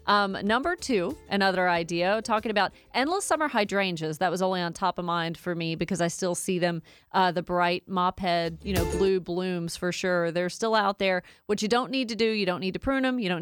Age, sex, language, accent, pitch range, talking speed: 40-59, female, English, American, 180-215 Hz, 235 wpm